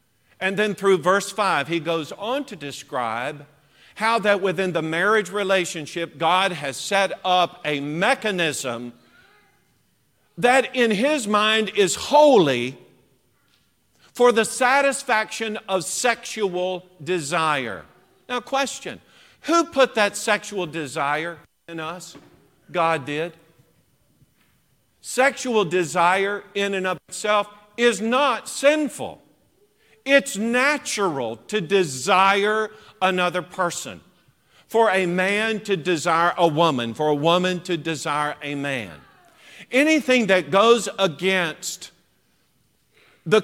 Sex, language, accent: male, English, American